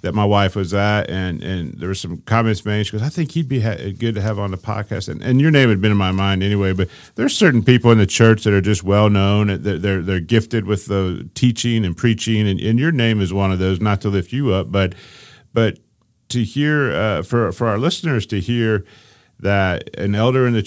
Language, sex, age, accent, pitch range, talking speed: English, male, 40-59, American, 95-120 Hz, 250 wpm